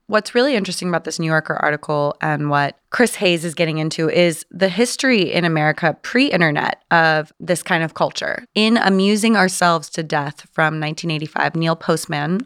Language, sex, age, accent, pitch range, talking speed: English, female, 20-39, American, 155-190 Hz, 170 wpm